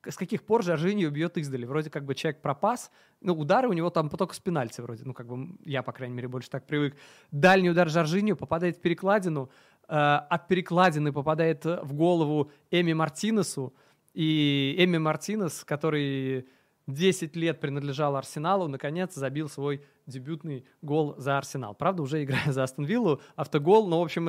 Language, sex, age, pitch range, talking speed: Russian, male, 20-39, 145-175 Hz, 170 wpm